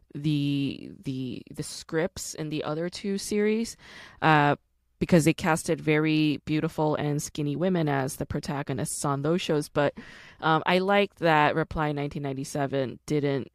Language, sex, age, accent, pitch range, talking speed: English, female, 20-39, American, 145-175 Hz, 135 wpm